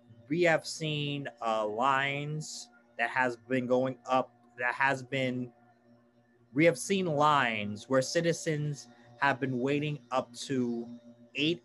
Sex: male